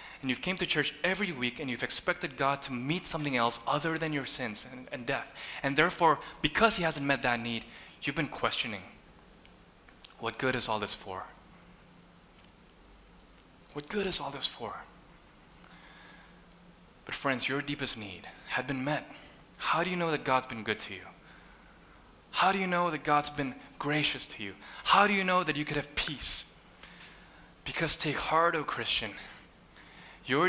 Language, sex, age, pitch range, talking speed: English, male, 20-39, 130-185 Hz, 175 wpm